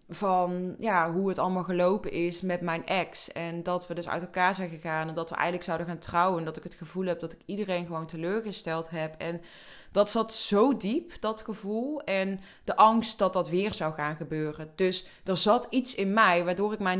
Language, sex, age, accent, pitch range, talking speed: Dutch, female, 20-39, Dutch, 175-210 Hz, 215 wpm